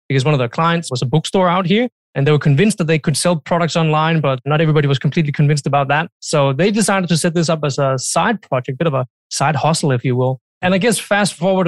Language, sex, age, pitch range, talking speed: English, male, 20-39, 135-170 Hz, 270 wpm